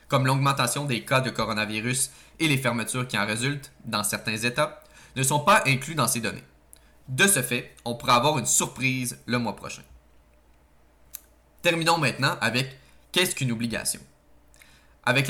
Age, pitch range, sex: 20-39, 110-140 Hz, male